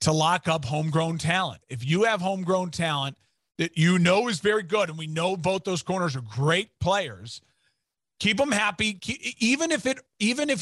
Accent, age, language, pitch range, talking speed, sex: American, 40-59, English, 150-205 Hz, 175 wpm, male